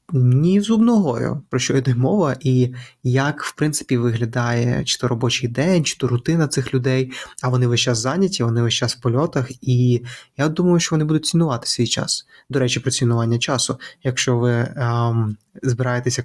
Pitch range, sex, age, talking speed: 125-145 Hz, male, 20-39, 175 wpm